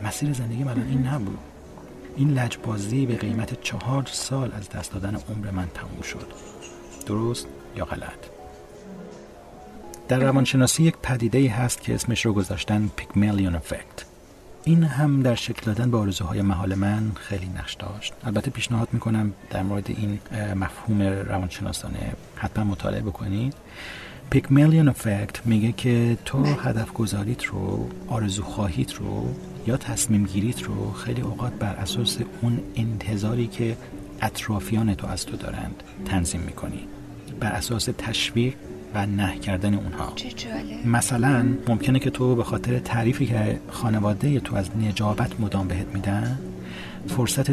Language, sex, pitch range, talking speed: Persian, male, 100-120 Hz, 140 wpm